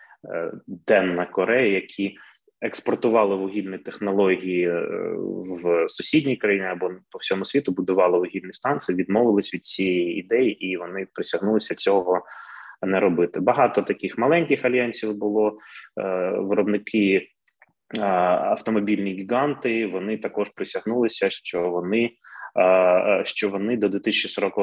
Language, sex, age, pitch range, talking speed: Ukrainian, male, 20-39, 95-115 Hz, 105 wpm